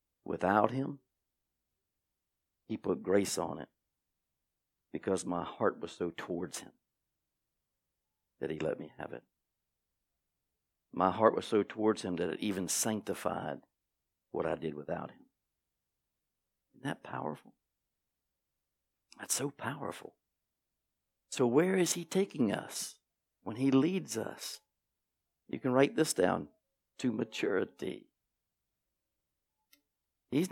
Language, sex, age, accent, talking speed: English, male, 60-79, American, 115 wpm